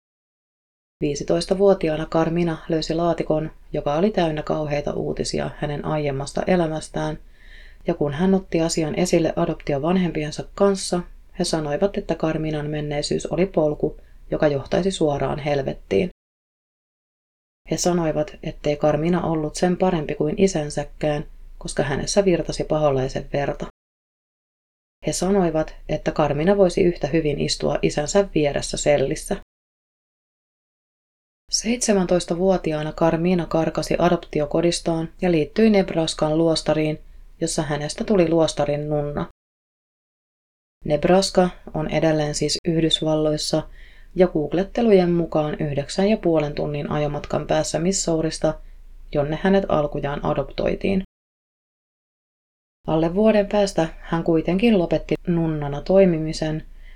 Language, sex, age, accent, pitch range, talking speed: Finnish, female, 30-49, native, 150-180 Hz, 100 wpm